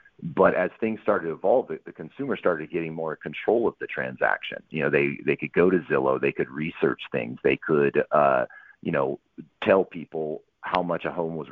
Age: 40-59